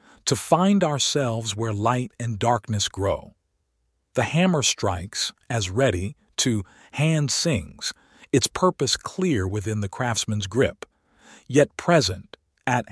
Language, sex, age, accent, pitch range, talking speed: English, male, 50-69, American, 105-145 Hz, 120 wpm